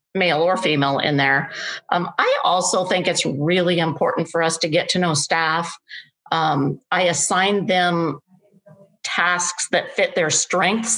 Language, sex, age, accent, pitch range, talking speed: English, female, 50-69, American, 160-195 Hz, 155 wpm